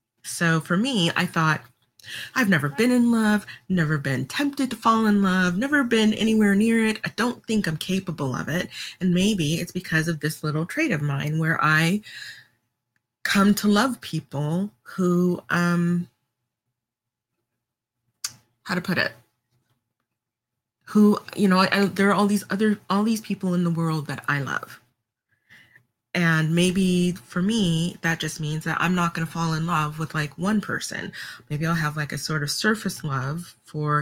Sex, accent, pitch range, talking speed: female, American, 150-195 Hz, 170 wpm